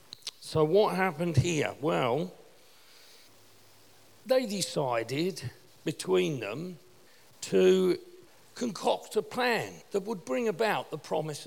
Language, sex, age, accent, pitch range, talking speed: English, male, 50-69, British, 170-245 Hz, 100 wpm